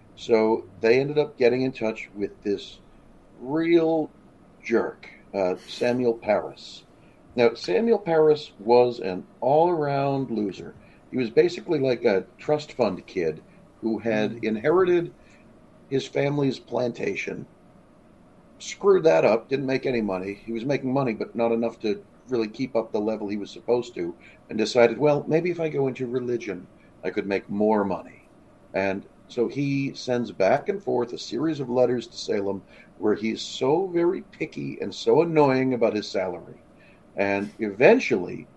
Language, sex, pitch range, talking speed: English, male, 105-145 Hz, 155 wpm